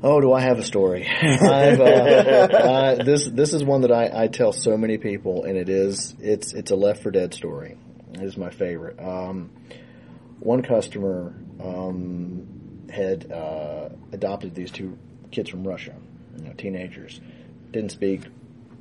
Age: 30-49